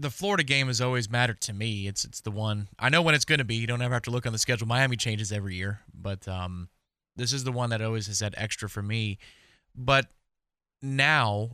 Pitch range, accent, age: 110-140 Hz, American, 20-39